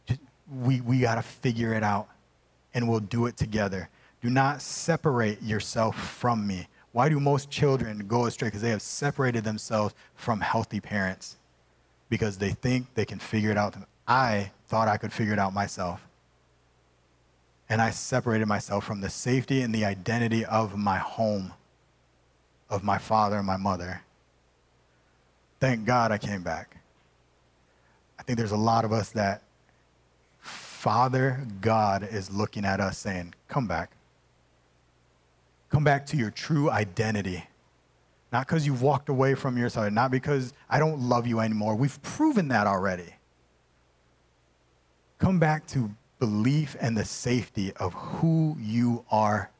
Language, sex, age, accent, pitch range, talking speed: English, male, 30-49, American, 90-125 Hz, 150 wpm